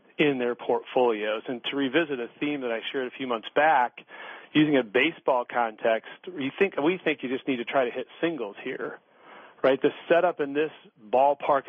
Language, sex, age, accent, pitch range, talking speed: English, male, 40-59, American, 115-145 Hz, 195 wpm